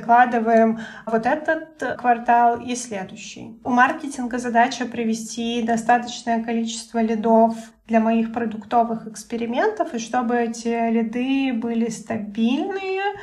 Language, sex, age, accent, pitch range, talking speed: Russian, female, 20-39, native, 225-240 Hz, 100 wpm